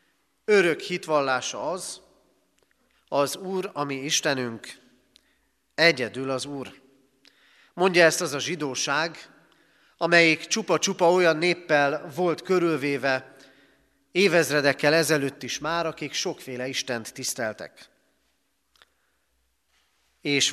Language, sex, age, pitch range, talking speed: Hungarian, male, 40-59, 135-175 Hz, 90 wpm